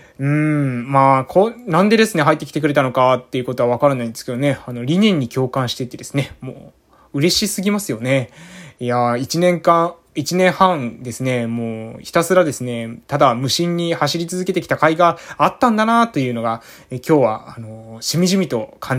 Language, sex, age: Japanese, male, 20-39